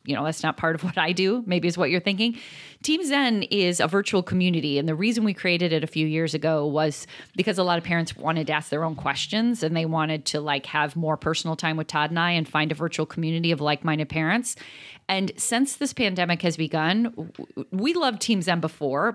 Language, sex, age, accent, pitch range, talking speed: English, female, 30-49, American, 160-210 Hz, 230 wpm